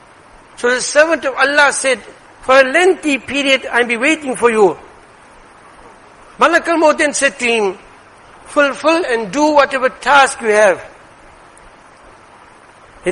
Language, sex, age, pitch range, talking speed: English, male, 60-79, 240-290 Hz, 135 wpm